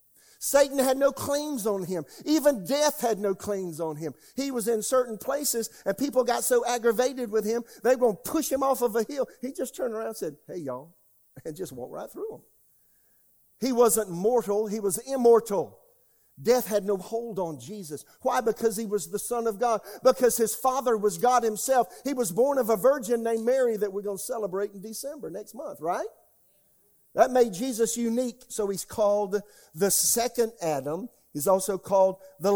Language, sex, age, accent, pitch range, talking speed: English, male, 50-69, American, 170-240 Hz, 195 wpm